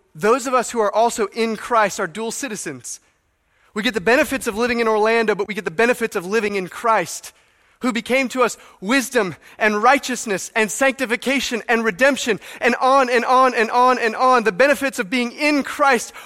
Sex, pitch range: male, 190-240 Hz